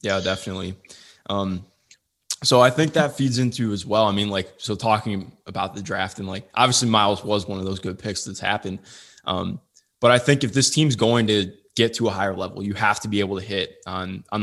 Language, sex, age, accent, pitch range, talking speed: English, male, 20-39, American, 95-115 Hz, 225 wpm